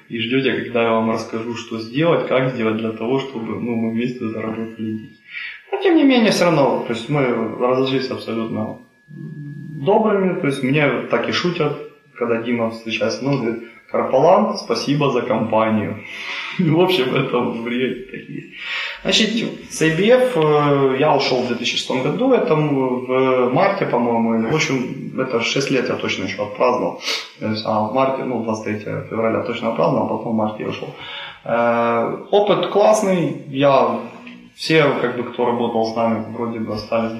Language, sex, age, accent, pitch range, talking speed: Ukrainian, male, 20-39, native, 110-140 Hz, 160 wpm